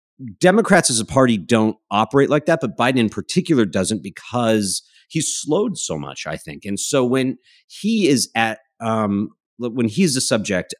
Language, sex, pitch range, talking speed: English, male, 95-125 Hz, 170 wpm